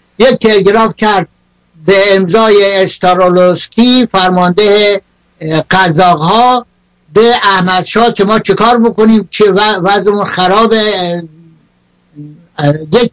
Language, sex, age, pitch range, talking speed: Persian, male, 60-79, 160-205 Hz, 85 wpm